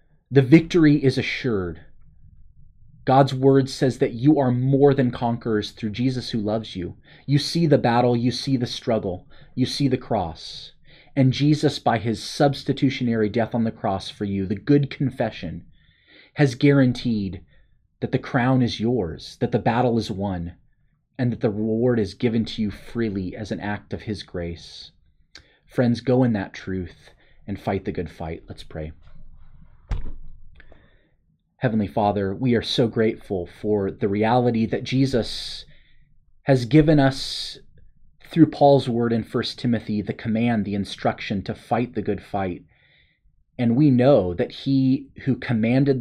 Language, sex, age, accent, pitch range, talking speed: English, male, 30-49, American, 105-135 Hz, 155 wpm